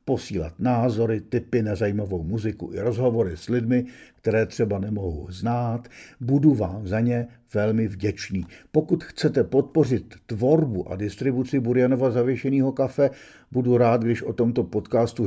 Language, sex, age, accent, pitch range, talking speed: Czech, male, 50-69, native, 100-125 Hz, 140 wpm